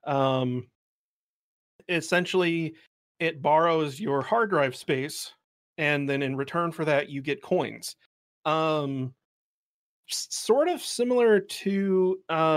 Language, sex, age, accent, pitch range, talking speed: English, male, 30-49, American, 130-150 Hz, 110 wpm